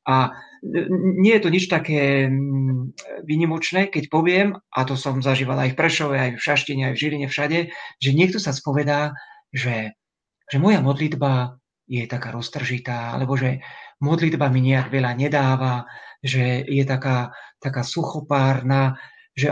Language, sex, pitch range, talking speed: Slovak, male, 135-165 Hz, 145 wpm